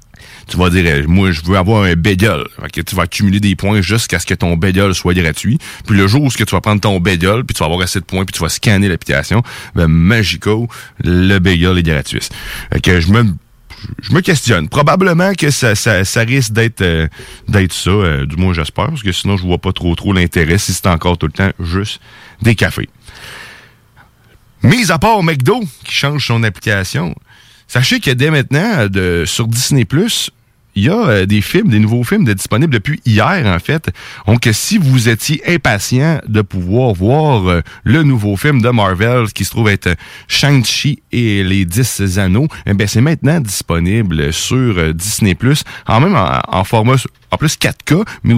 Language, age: French, 30-49